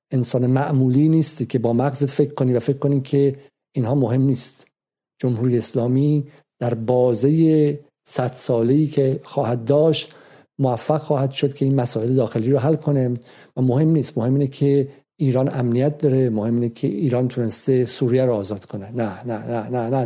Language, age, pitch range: Persian, 50-69, 125-150 Hz